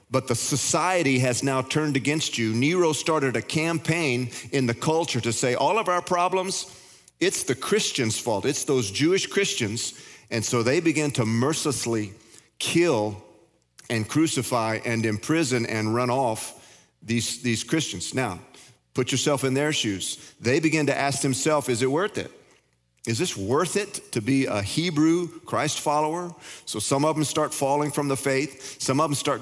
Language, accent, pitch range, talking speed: English, American, 120-155 Hz, 170 wpm